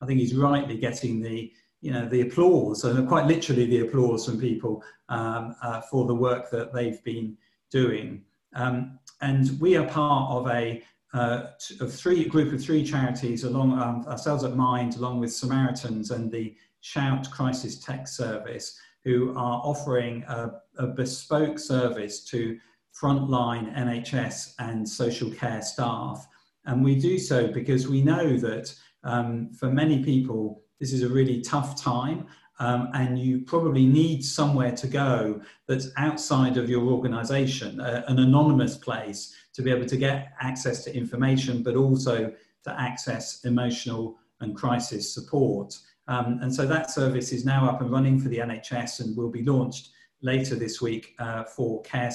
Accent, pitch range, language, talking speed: British, 120-135 Hz, English, 165 wpm